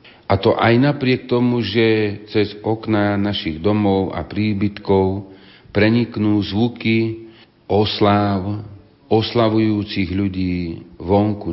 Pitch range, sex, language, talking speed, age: 85-105 Hz, male, Slovak, 95 wpm, 50-69